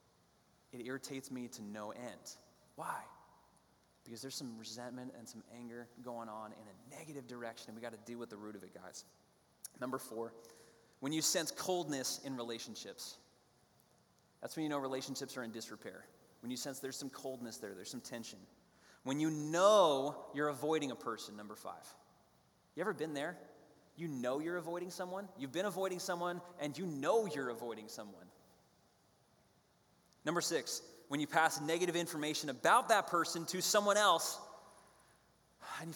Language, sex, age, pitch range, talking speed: English, male, 30-49, 125-165 Hz, 170 wpm